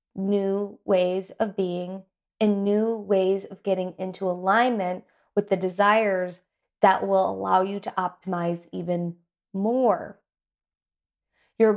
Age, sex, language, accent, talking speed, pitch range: 20-39, female, English, American, 115 wpm, 185-225 Hz